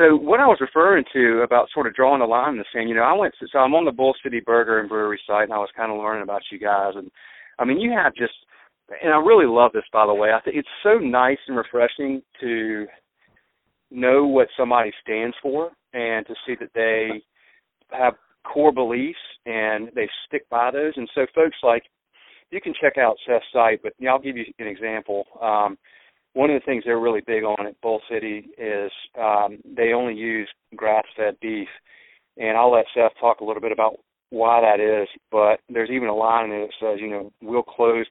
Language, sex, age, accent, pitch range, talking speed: English, male, 40-59, American, 110-130 Hz, 220 wpm